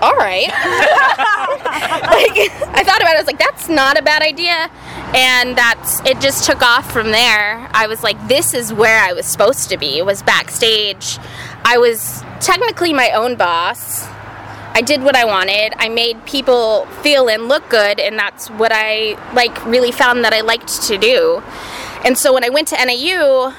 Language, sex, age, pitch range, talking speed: English, female, 20-39, 225-295 Hz, 190 wpm